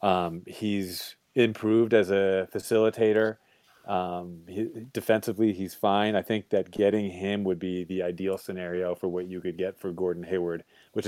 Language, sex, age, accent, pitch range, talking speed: English, male, 30-49, American, 95-110 Hz, 160 wpm